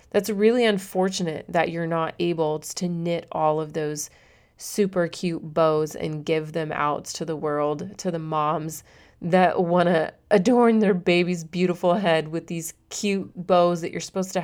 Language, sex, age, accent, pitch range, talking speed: English, female, 30-49, American, 160-195 Hz, 165 wpm